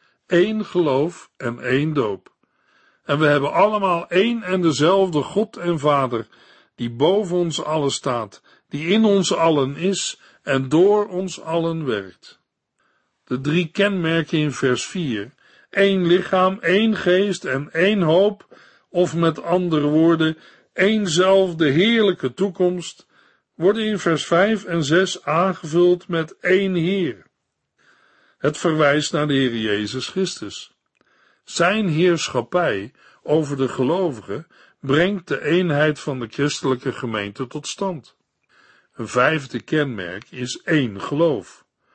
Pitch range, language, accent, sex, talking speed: 140-185 Hz, Dutch, Dutch, male, 125 wpm